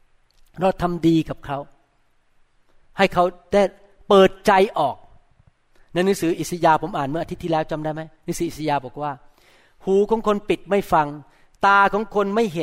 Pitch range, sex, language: 155-200 Hz, male, Thai